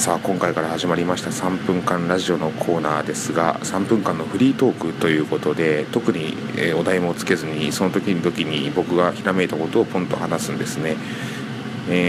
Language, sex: Japanese, male